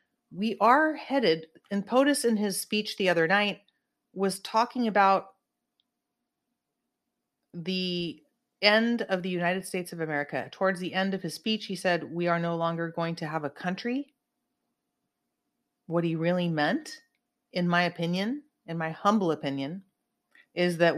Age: 30-49